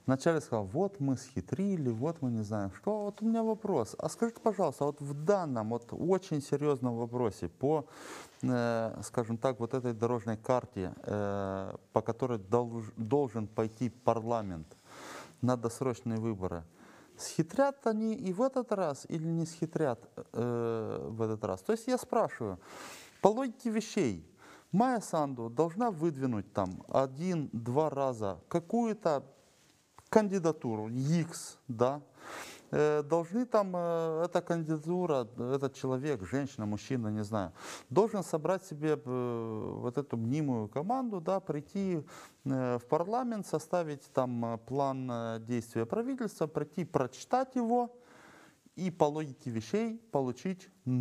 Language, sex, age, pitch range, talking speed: Romanian, male, 20-39, 115-180 Hz, 120 wpm